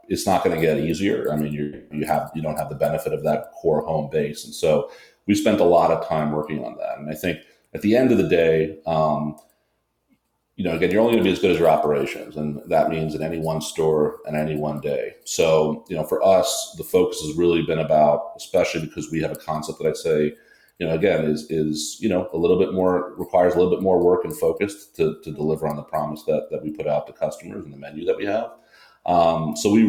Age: 30-49